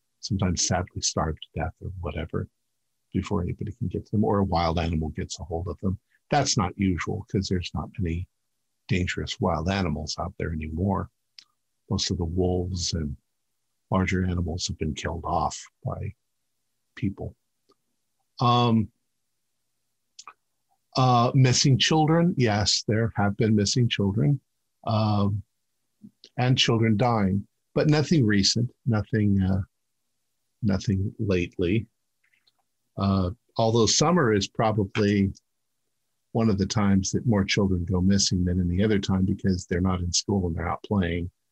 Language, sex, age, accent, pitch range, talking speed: English, male, 50-69, American, 90-115 Hz, 140 wpm